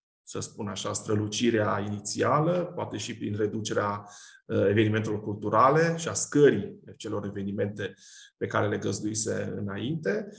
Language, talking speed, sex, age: Romanian, 120 wpm, male, 20-39